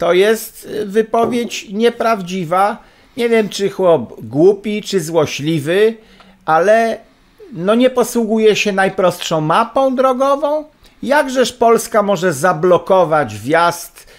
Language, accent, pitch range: Polish, native, 150-230 Hz